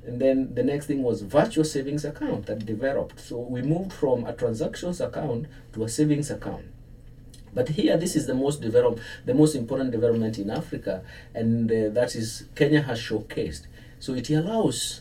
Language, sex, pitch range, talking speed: English, male, 115-150 Hz, 180 wpm